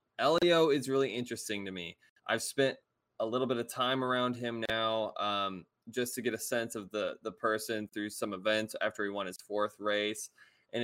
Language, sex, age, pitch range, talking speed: English, male, 20-39, 110-135 Hz, 200 wpm